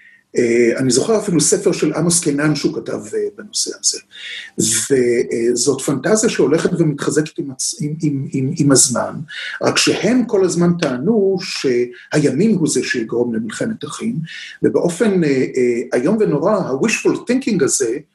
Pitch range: 145-205 Hz